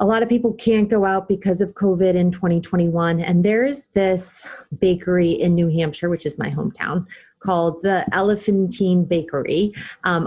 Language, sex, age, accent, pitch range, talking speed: English, female, 30-49, American, 170-205 Hz, 170 wpm